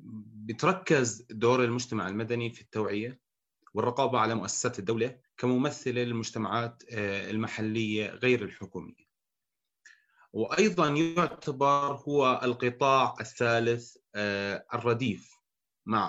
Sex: male